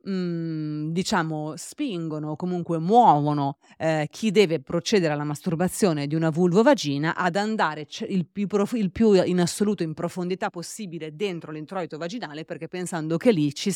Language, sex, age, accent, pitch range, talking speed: Italian, female, 30-49, native, 155-190 Hz, 155 wpm